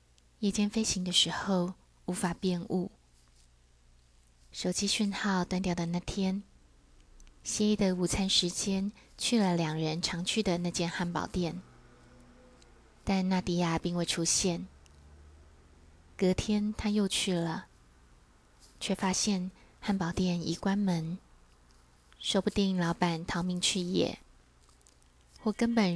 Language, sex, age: Chinese, female, 20-39